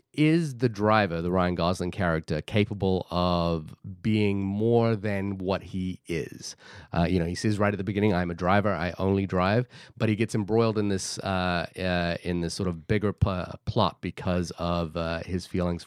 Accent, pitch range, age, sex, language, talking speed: American, 95-115 Hz, 30-49, male, English, 190 wpm